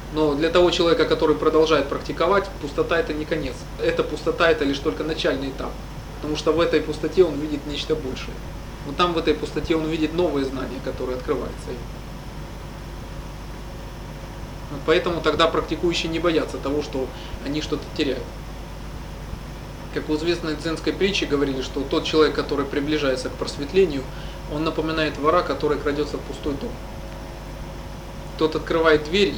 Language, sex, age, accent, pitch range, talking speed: Russian, male, 20-39, native, 140-160 Hz, 155 wpm